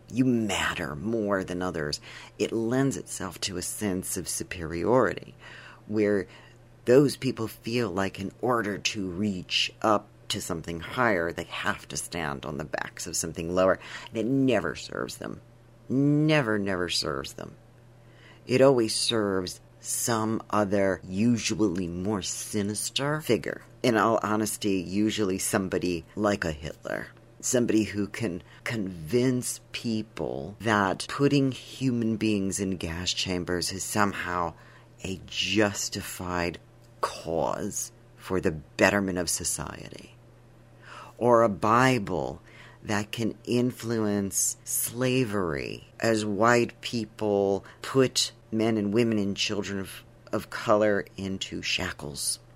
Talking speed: 120 wpm